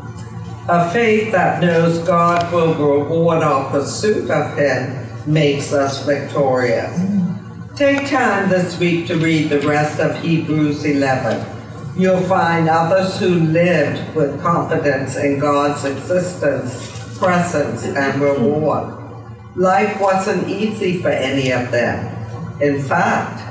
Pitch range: 140-175 Hz